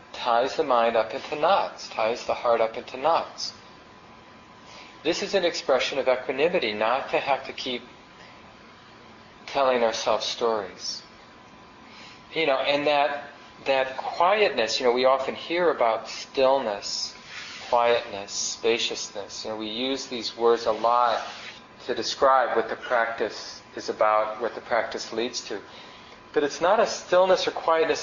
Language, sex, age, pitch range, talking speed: English, male, 40-59, 110-135 Hz, 145 wpm